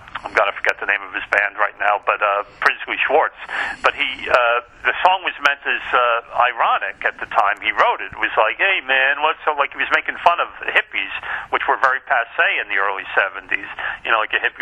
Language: English